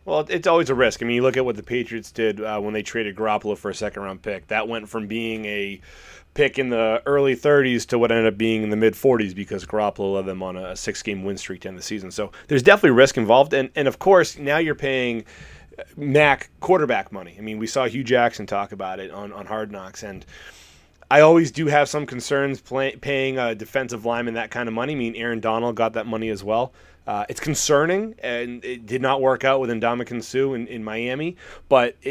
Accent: American